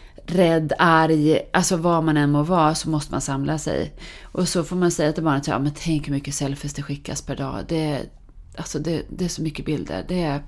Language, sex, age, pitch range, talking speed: English, female, 30-49, 145-180 Hz, 230 wpm